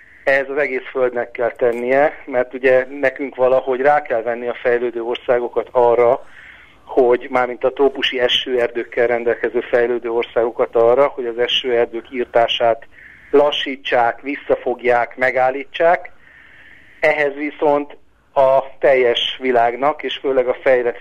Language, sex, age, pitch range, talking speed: Hungarian, male, 50-69, 120-145 Hz, 120 wpm